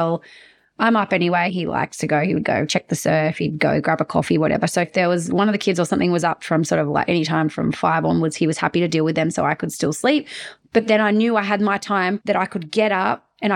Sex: female